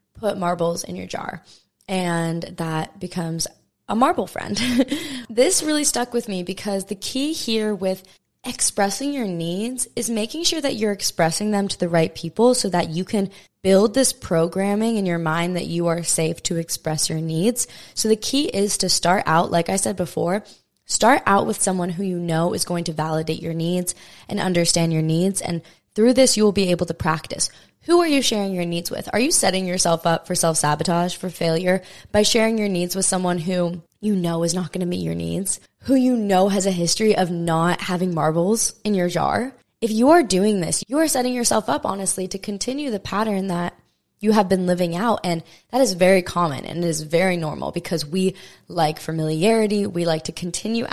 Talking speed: 205 wpm